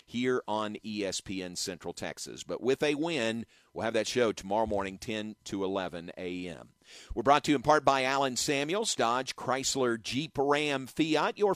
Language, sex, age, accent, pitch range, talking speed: English, male, 50-69, American, 105-145 Hz, 175 wpm